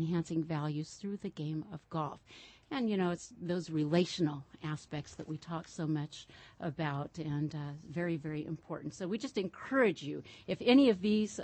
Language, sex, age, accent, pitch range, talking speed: English, female, 50-69, American, 155-205 Hz, 180 wpm